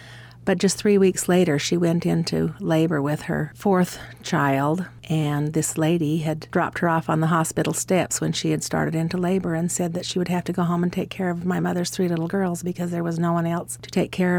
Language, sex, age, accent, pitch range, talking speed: English, female, 40-59, American, 160-180 Hz, 240 wpm